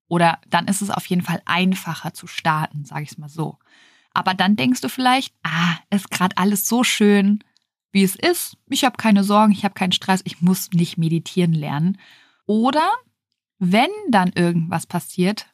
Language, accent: German, German